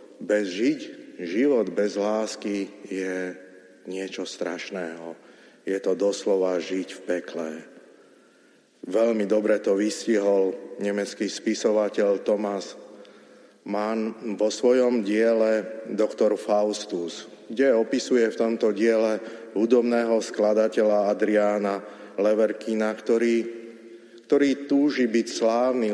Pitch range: 100-115 Hz